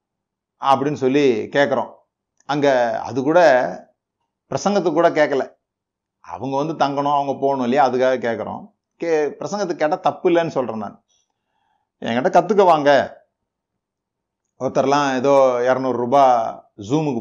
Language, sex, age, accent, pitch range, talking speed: Tamil, male, 30-49, native, 120-150 Hz, 110 wpm